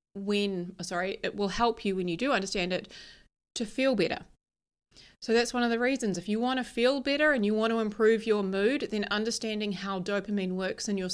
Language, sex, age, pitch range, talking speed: English, female, 30-49, 180-215 Hz, 215 wpm